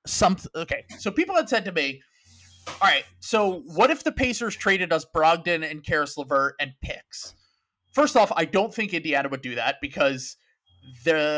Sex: male